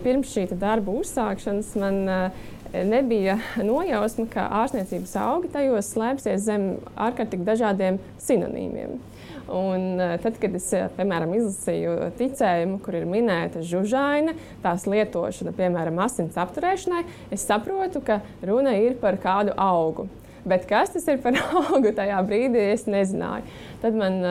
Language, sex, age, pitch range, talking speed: English, female, 20-39, 185-240 Hz, 130 wpm